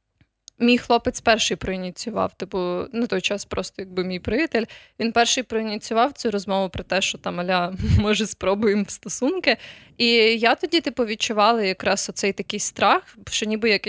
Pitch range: 190-230 Hz